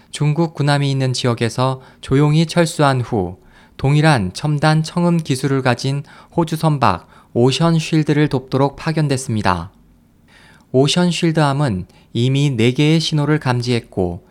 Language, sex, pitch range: Korean, male, 115-155 Hz